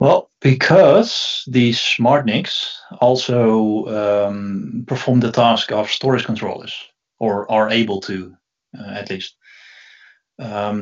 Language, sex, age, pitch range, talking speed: English, male, 30-49, 105-125 Hz, 115 wpm